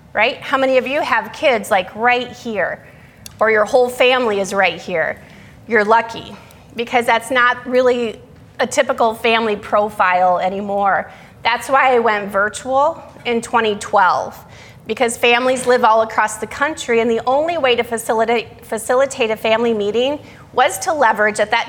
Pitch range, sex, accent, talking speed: 210-255 Hz, female, American, 160 wpm